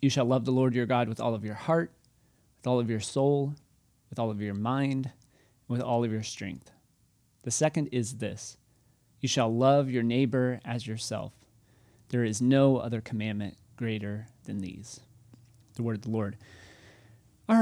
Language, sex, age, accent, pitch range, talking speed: English, male, 30-49, American, 115-135 Hz, 180 wpm